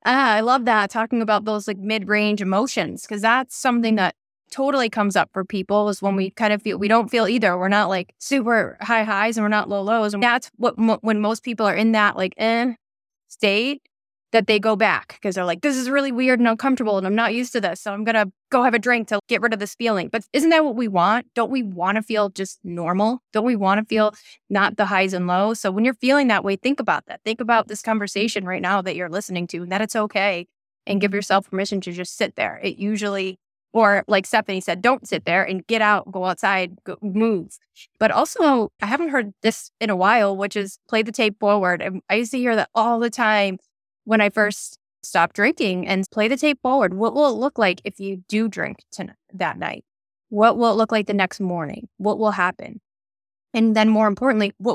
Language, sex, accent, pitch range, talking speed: English, female, American, 190-230 Hz, 240 wpm